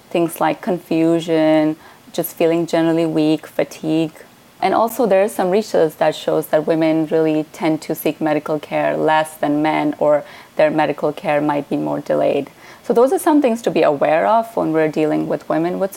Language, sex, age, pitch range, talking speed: English, female, 30-49, 155-190 Hz, 190 wpm